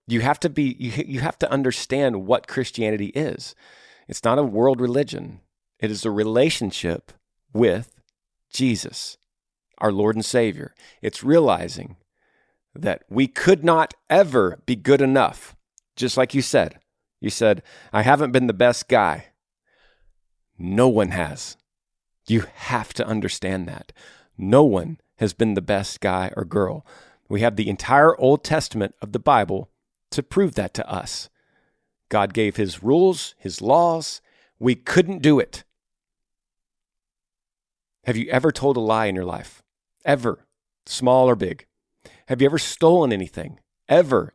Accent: American